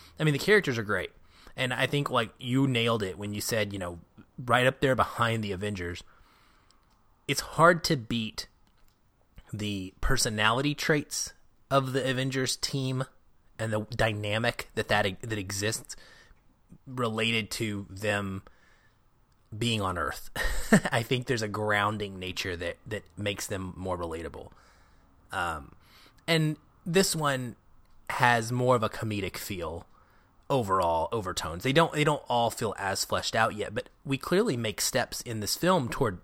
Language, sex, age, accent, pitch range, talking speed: English, male, 30-49, American, 100-130 Hz, 150 wpm